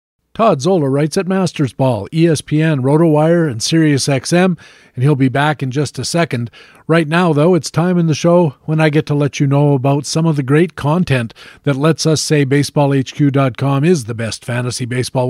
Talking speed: 190 wpm